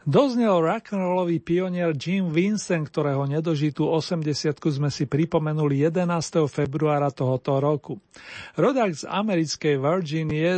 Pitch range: 145-180 Hz